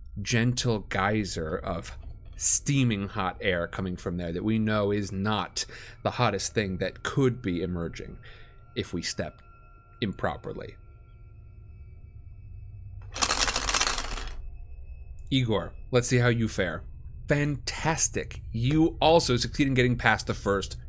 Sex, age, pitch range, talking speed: male, 30-49, 95-115 Hz, 115 wpm